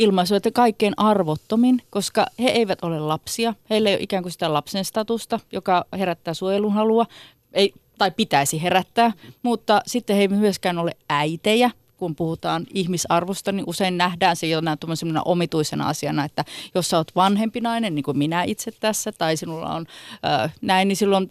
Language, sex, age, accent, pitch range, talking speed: Finnish, female, 30-49, native, 165-220 Hz, 165 wpm